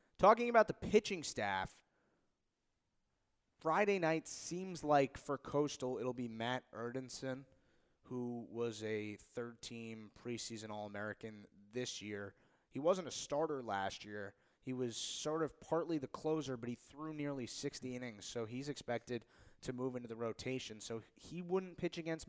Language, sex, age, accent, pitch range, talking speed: English, male, 20-39, American, 110-130 Hz, 150 wpm